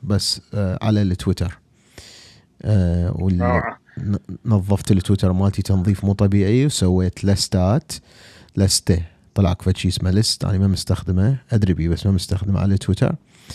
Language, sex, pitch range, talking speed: Arabic, male, 95-115 Hz, 130 wpm